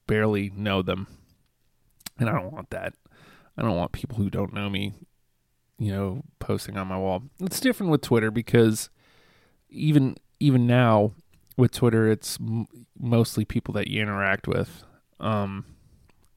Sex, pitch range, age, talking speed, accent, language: male, 105-125 Hz, 30-49, 145 wpm, American, English